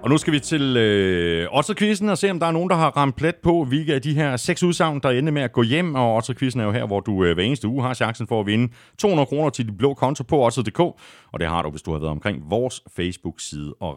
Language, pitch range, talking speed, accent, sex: Danish, 85-135 Hz, 285 wpm, native, male